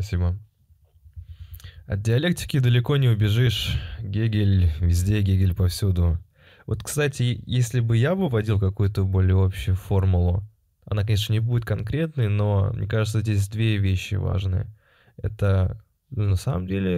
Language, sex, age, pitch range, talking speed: Russian, male, 20-39, 95-110 Hz, 130 wpm